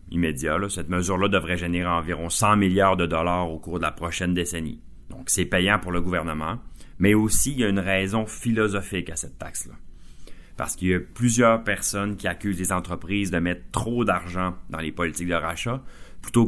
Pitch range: 85-100 Hz